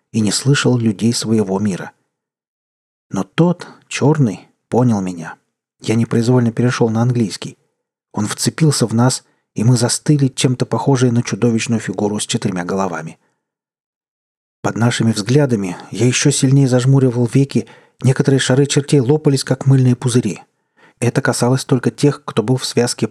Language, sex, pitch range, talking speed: Russian, male, 110-130 Hz, 140 wpm